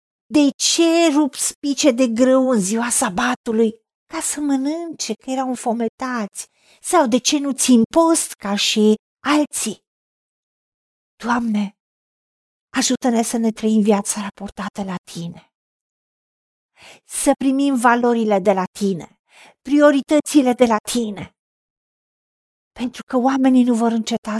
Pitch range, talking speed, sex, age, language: 225-280 Hz, 120 wpm, female, 40-59, Romanian